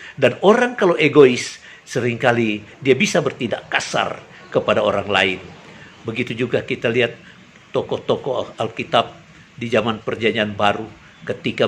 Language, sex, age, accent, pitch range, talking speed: Indonesian, male, 50-69, native, 105-145 Hz, 120 wpm